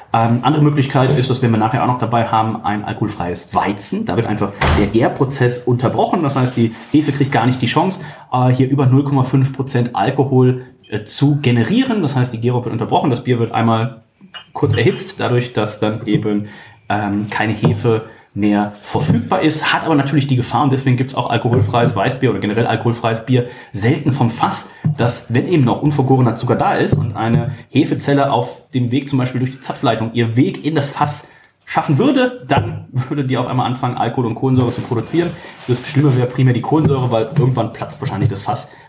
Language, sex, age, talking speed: German, male, 30-49, 200 wpm